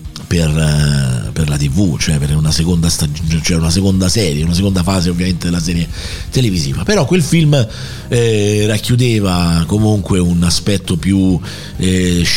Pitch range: 85-105 Hz